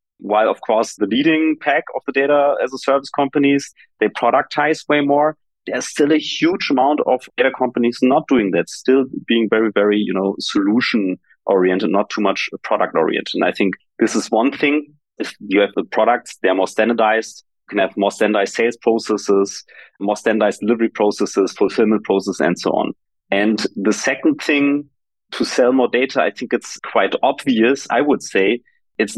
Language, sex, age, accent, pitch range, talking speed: English, male, 30-49, German, 110-145 Hz, 175 wpm